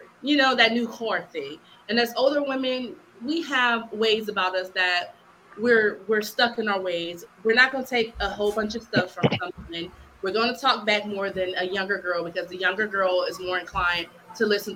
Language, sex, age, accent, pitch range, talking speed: English, female, 20-39, American, 195-270 Hz, 220 wpm